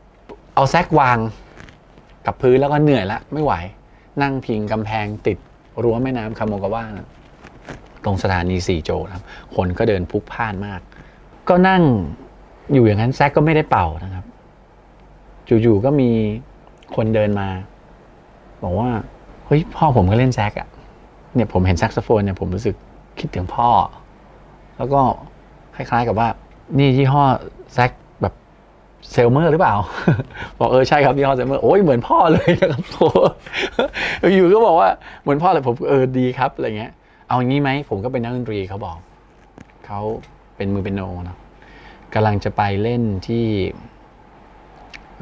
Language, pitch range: Thai, 95-130 Hz